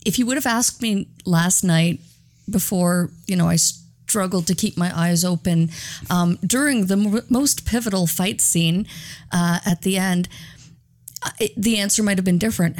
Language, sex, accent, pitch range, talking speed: English, female, American, 180-230 Hz, 165 wpm